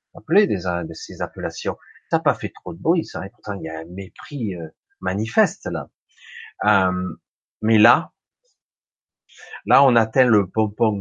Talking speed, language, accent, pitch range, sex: 160 wpm, French, French, 95-155 Hz, male